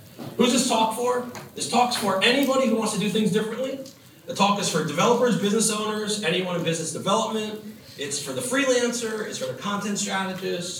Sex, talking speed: male, 190 wpm